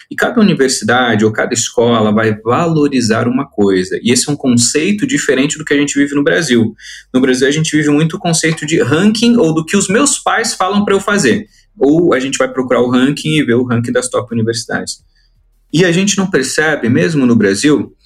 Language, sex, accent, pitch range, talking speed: Portuguese, male, Brazilian, 130-215 Hz, 215 wpm